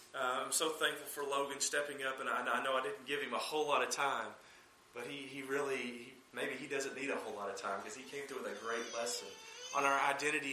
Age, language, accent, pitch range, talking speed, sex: 40-59, English, American, 150-210 Hz, 270 wpm, male